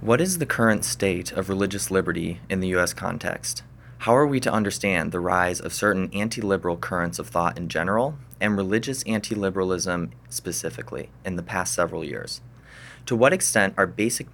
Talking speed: 170 wpm